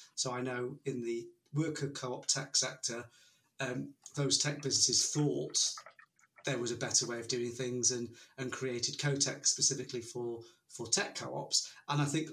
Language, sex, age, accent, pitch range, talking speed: English, male, 30-49, British, 130-145 Hz, 165 wpm